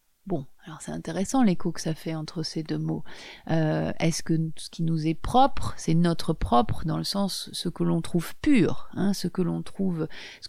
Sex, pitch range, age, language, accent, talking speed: female, 160-205 Hz, 30-49, French, French, 210 wpm